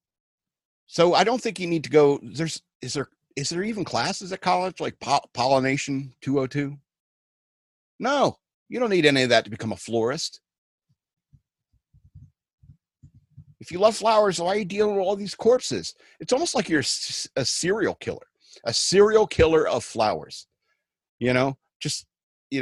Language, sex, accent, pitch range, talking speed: English, male, American, 125-175 Hz, 155 wpm